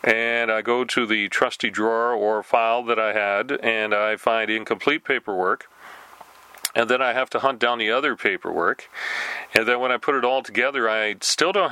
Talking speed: 195 wpm